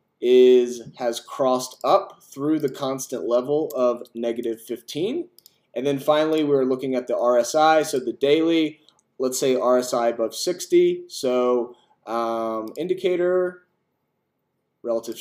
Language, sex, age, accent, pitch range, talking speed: English, male, 20-39, American, 125-165 Hz, 120 wpm